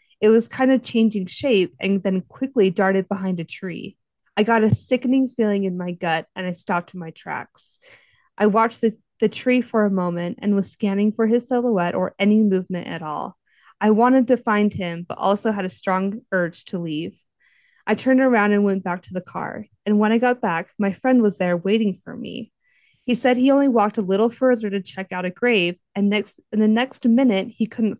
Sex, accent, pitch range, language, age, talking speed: female, American, 185-230 Hz, English, 20-39, 215 wpm